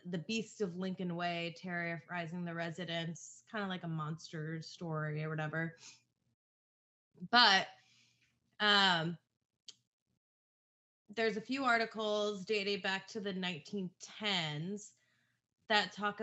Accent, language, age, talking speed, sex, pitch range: American, English, 20-39, 105 wpm, female, 170-205 Hz